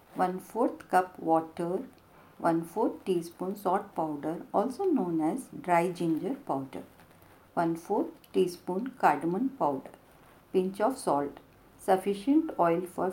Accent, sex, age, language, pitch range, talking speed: native, female, 50-69, Hindi, 170-220 Hz, 105 wpm